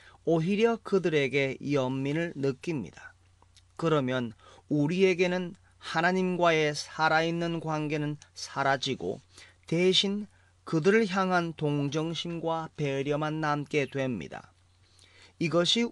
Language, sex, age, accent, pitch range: Korean, male, 40-59, native, 105-175 Hz